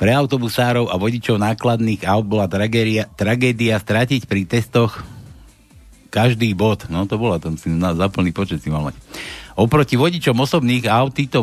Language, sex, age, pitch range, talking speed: Slovak, male, 60-79, 105-130 Hz, 140 wpm